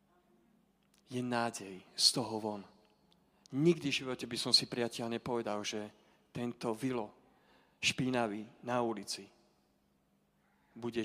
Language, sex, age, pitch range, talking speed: Slovak, male, 40-59, 105-125 Hz, 110 wpm